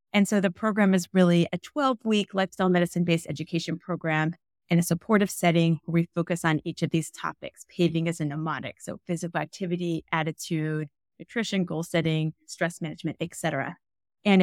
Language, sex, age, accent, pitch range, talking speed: English, female, 20-39, American, 165-210 Hz, 165 wpm